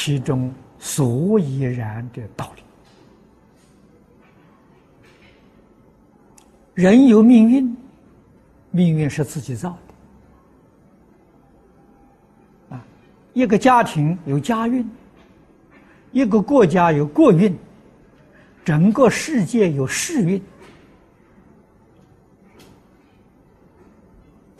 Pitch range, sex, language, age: 140-230 Hz, male, Chinese, 60-79